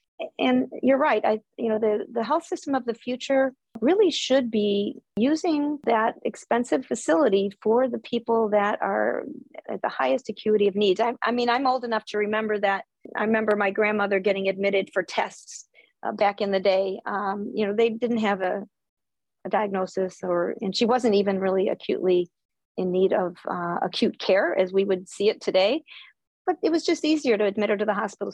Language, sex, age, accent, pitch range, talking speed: English, female, 40-59, American, 195-230 Hz, 195 wpm